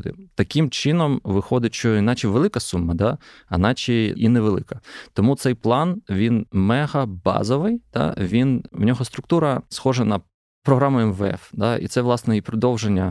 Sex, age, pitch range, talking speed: male, 20-39, 100-125 Hz, 140 wpm